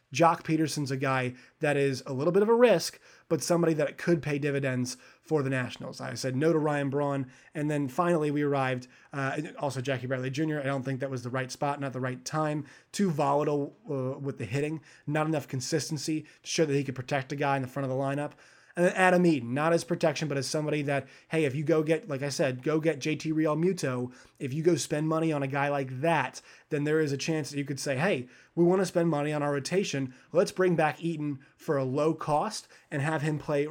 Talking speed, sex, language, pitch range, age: 240 wpm, male, English, 135-160 Hz, 30-49